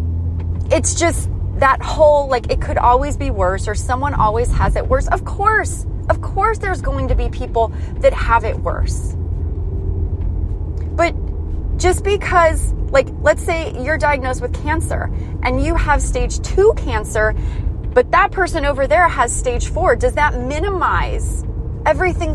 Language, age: English, 30-49